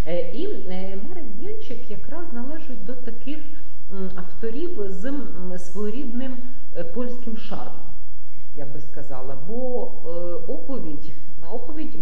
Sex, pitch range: female, 175-245 Hz